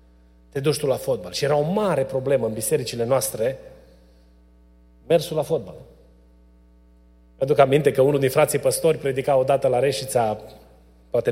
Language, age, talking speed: Romanian, 30-49, 155 wpm